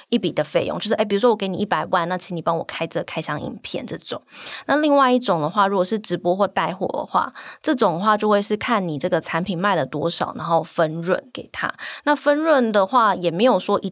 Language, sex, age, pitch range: Chinese, female, 20-39, 175-230 Hz